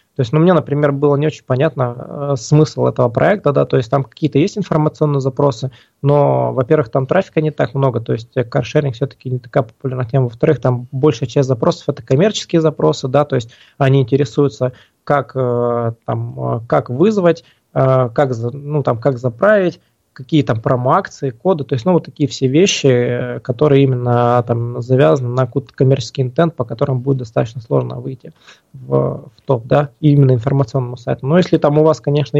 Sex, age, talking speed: male, 20-39, 185 wpm